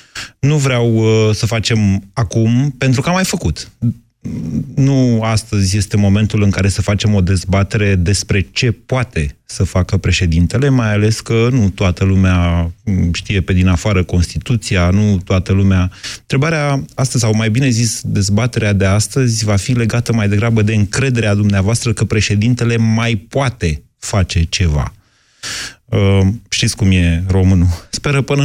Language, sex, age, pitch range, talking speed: Romanian, male, 30-49, 100-130 Hz, 150 wpm